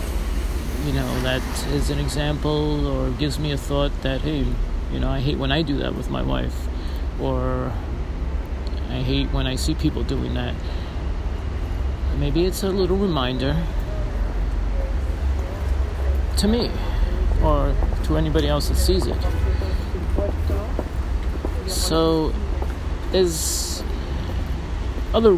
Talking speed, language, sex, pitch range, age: 120 wpm, English, male, 70-85 Hz, 50-69